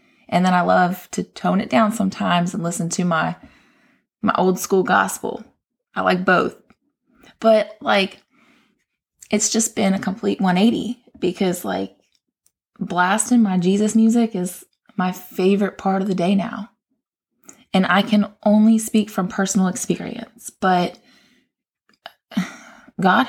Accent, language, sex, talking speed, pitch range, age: American, English, female, 135 wpm, 180-220 Hz, 20-39